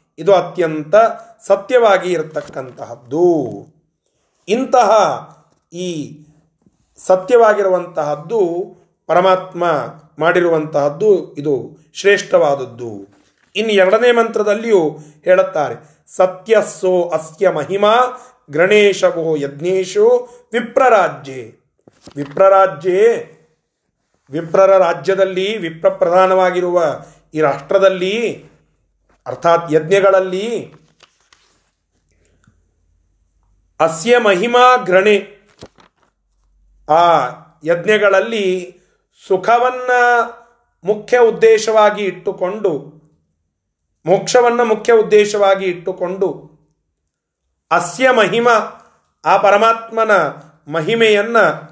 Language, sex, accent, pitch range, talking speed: Kannada, male, native, 155-215 Hz, 55 wpm